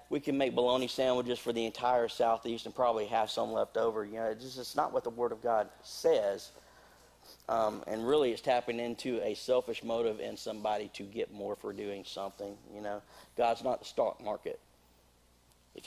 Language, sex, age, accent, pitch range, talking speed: English, male, 40-59, American, 105-140 Hz, 195 wpm